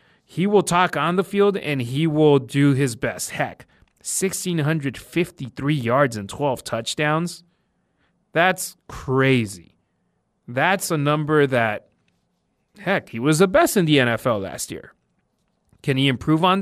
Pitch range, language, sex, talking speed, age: 145-190 Hz, English, male, 135 wpm, 30-49